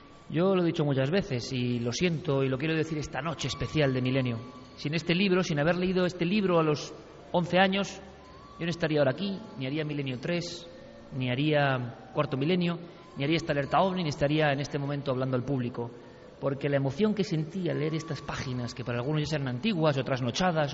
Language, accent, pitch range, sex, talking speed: Spanish, Spanish, 140-185 Hz, male, 210 wpm